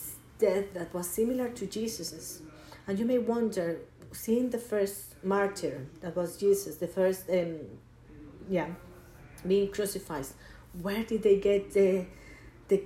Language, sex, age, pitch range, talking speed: Spanish, female, 40-59, 160-225 Hz, 135 wpm